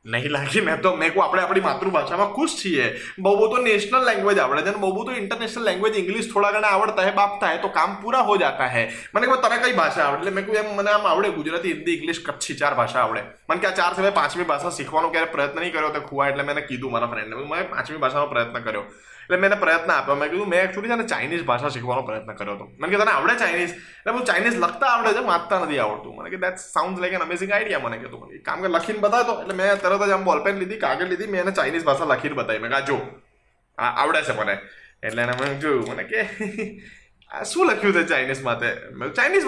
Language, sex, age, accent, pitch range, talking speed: Gujarati, male, 20-39, native, 140-205 Hz, 195 wpm